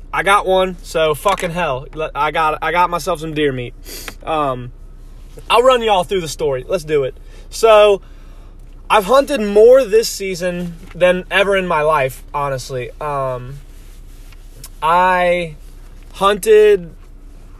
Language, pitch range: English, 140-185 Hz